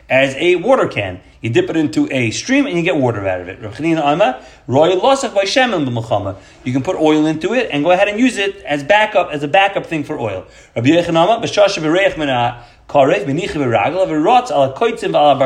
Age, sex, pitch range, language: 30-49, male, 135-195 Hz, English